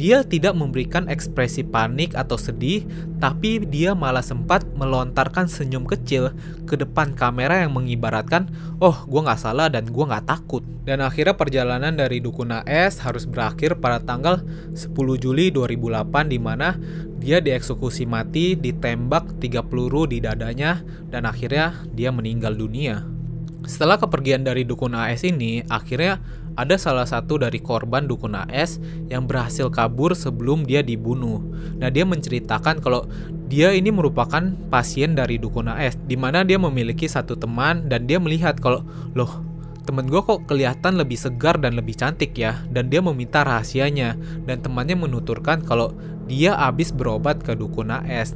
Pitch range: 125-165 Hz